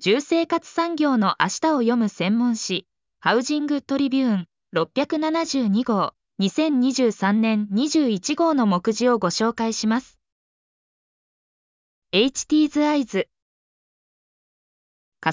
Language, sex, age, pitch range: Japanese, female, 20-39, 200-300 Hz